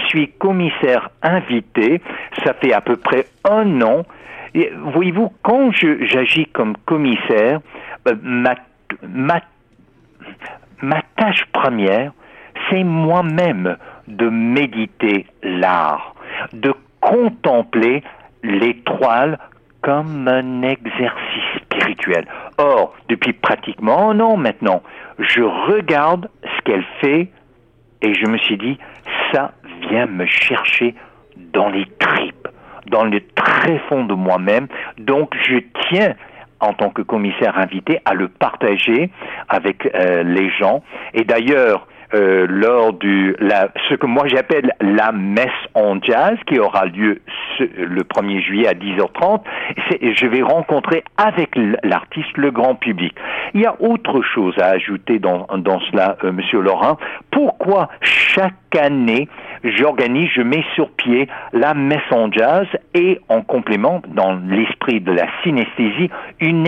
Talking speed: 130 wpm